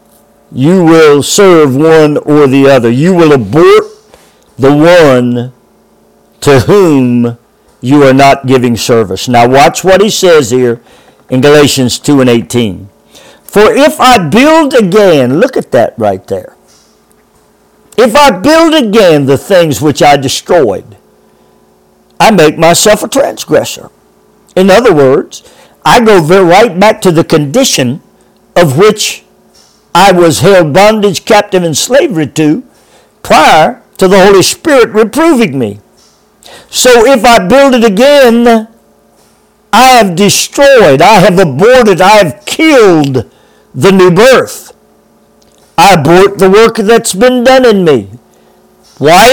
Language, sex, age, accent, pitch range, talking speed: English, male, 50-69, American, 145-235 Hz, 135 wpm